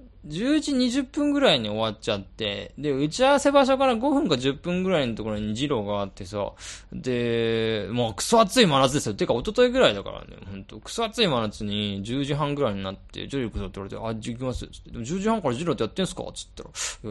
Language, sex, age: Japanese, male, 20-39